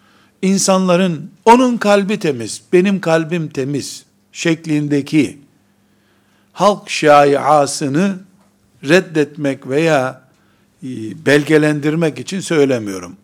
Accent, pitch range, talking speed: native, 125-170 Hz, 70 wpm